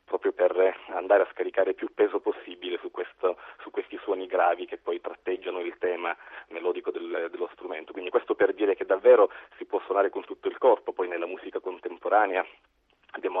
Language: Italian